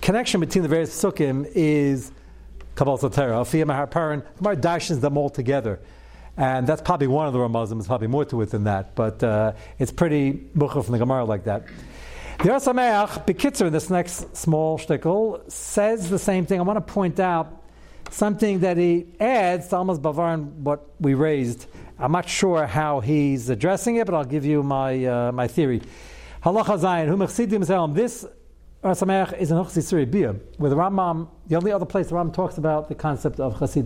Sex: male